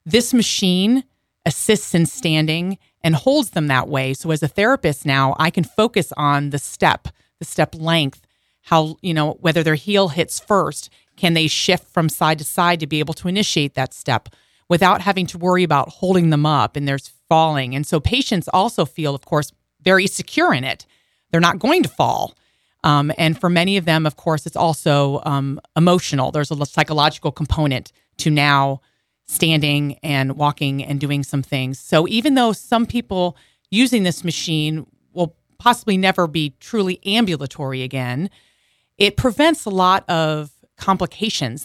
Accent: American